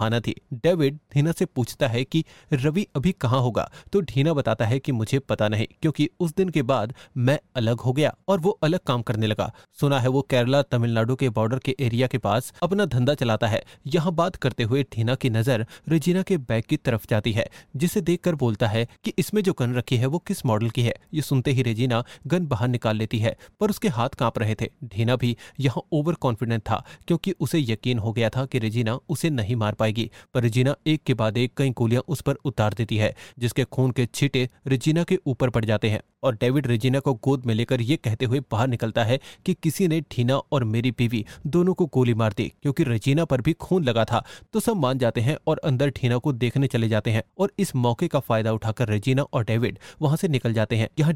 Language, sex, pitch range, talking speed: Hindi, male, 115-155 Hz, 180 wpm